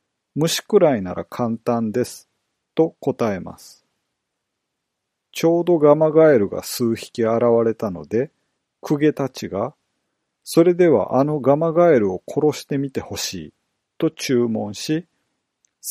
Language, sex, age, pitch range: Japanese, male, 40-59, 115-155 Hz